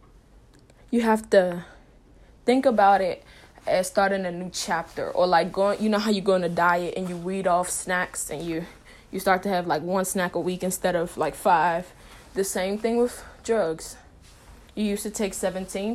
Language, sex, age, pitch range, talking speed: English, female, 20-39, 175-205 Hz, 195 wpm